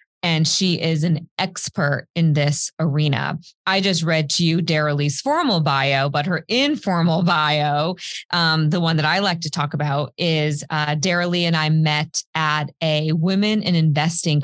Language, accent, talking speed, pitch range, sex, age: English, American, 175 wpm, 150-180 Hz, female, 20-39